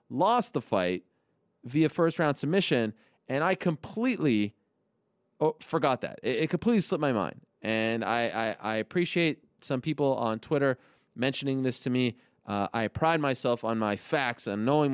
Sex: male